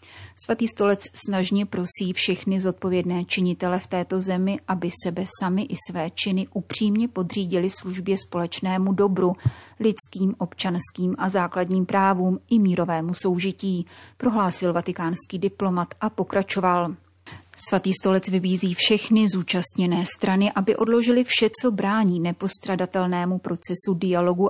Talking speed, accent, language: 120 wpm, native, Czech